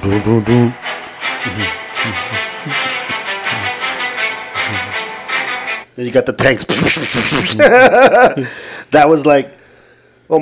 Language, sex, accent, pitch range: English, male, American, 120-140 Hz